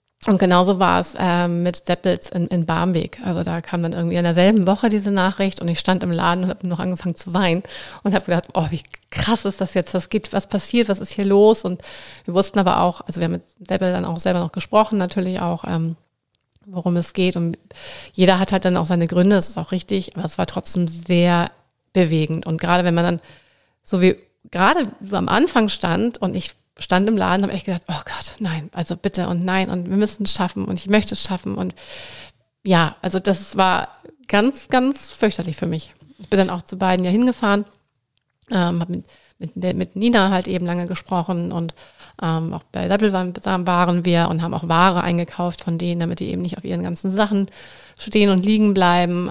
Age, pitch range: 30-49, 170-195 Hz